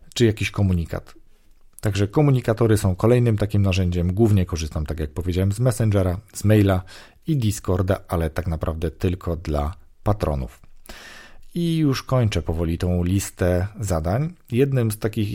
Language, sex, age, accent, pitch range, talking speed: Polish, male, 40-59, native, 90-115 Hz, 140 wpm